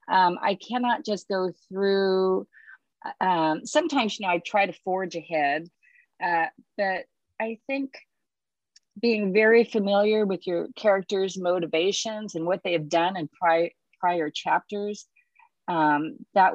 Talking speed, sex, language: 130 wpm, female, English